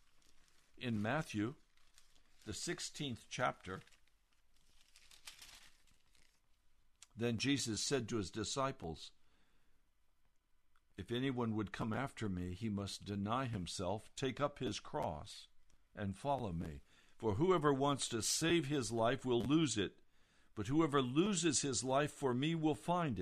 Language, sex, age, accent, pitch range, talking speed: English, male, 60-79, American, 100-160 Hz, 120 wpm